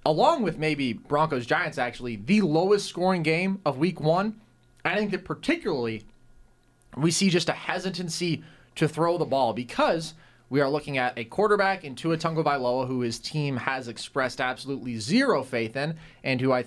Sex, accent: male, American